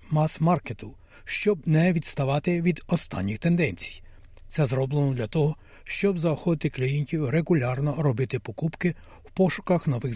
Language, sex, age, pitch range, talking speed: Ukrainian, male, 60-79, 125-160 Hz, 120 wpm